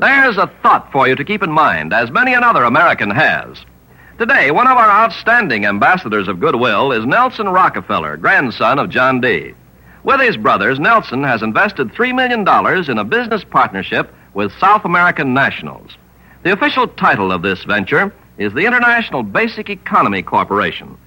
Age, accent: 60-79, American